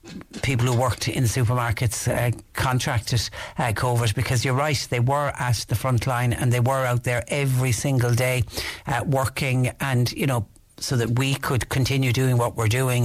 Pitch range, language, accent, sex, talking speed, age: 115-135 Hz, English, Irish, male, 185 wpm, 60-79